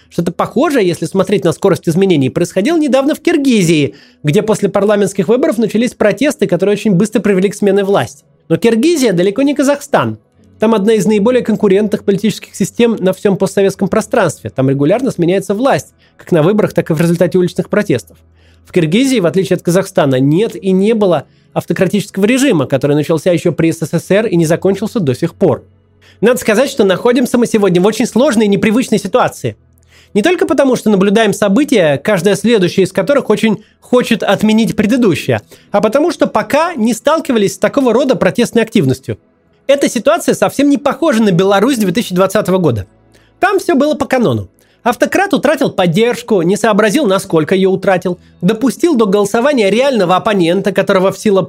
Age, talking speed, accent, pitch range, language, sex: 30-49, 165 wpm, native, 180-235 Hz, Russian, male